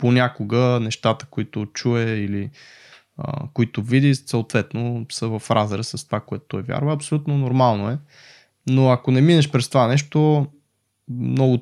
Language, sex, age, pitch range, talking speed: Bulgarian, male, 20-39, 115-140 Hz, 145 wpm